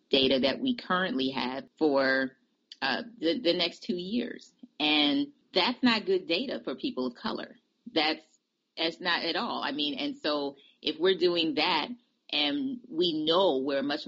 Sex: female